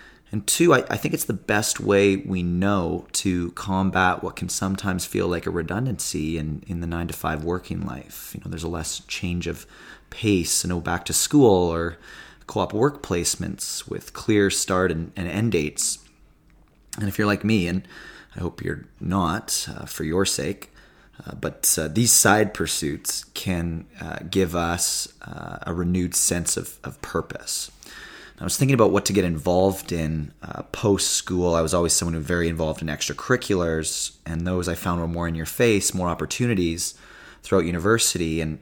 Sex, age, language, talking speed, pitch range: male, 20-39, English, 185 wpm, 80-95 Hz